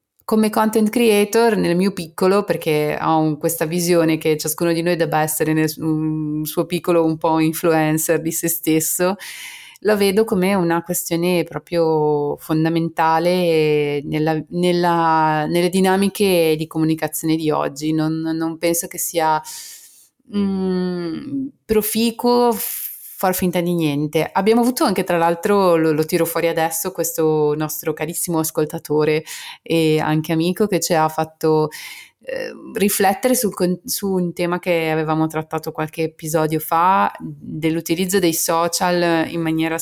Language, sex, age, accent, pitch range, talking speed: Italian, female, 30-49, native, 160-185 Hz, 135 wpm